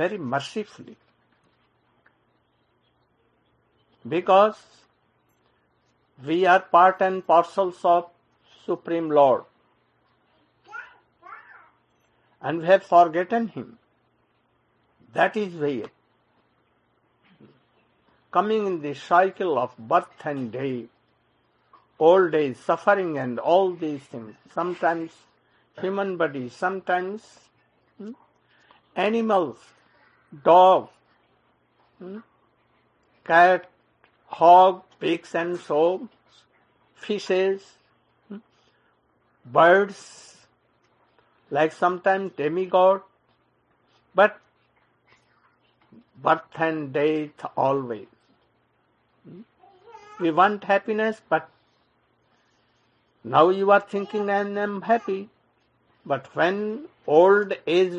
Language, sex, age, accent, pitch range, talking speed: English, male, 60-79, Indian, 150-195 Hz, 80 wpm